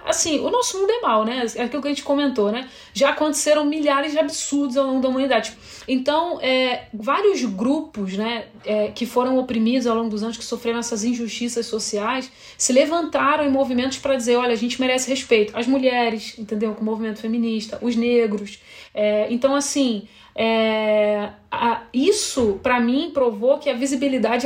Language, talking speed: Portuguese, 175 wpm